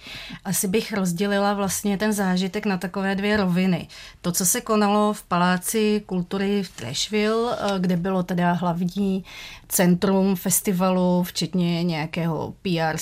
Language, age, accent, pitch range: Czech, 30-49, native, 175-195 Hz